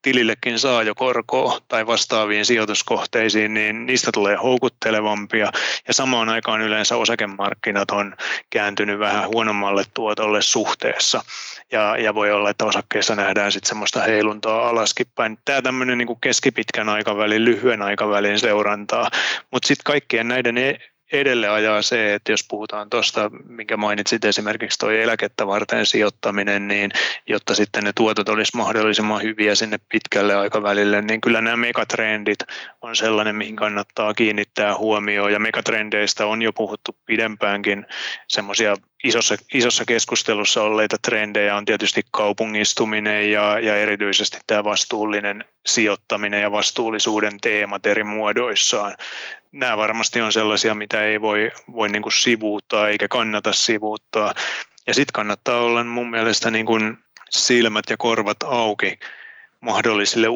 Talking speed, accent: 135 wpm, native